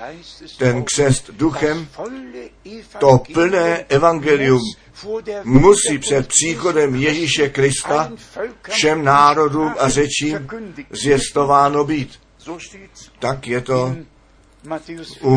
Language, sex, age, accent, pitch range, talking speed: Czech, male, 60-79, native, 130-155 Hz, 80 wpm